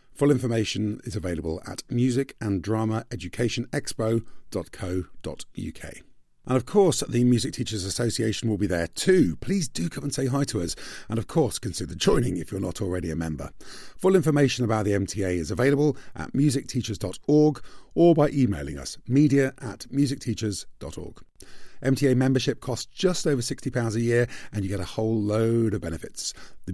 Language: English